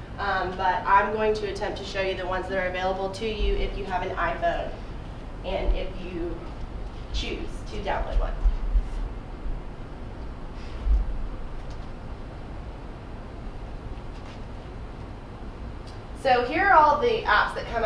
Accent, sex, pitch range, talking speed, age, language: American, female, 200-250 Hz, 120 wpm, 20-39, English